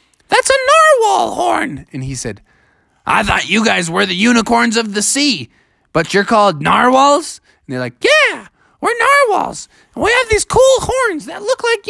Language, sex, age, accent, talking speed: English, male, 20-39, American, 180 wpm